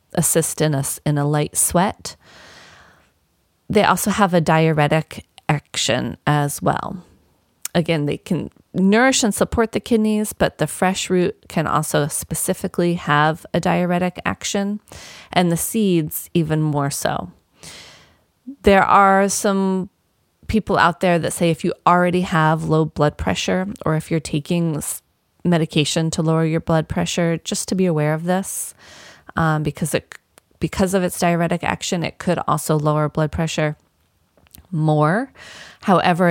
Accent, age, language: American, 30-49, English